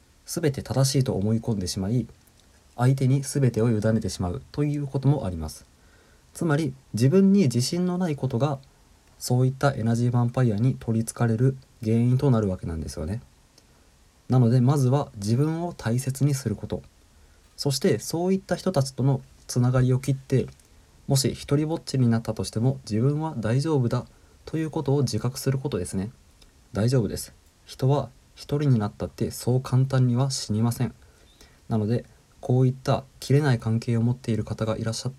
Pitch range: 105-135 Hz